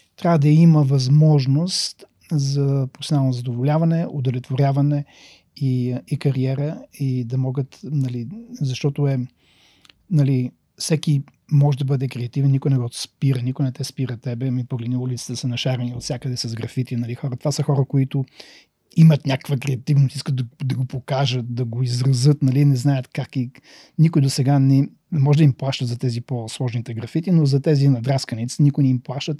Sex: male